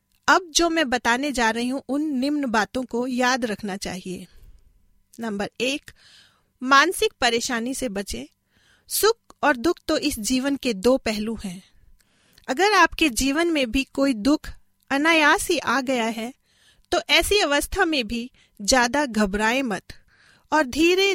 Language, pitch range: Hindi, 235-305 Hz